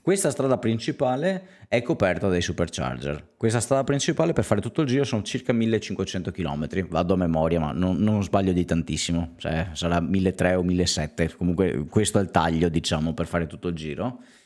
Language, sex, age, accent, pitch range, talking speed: Italian, male, 30-49, native, 80-95 Hz, 185 wpm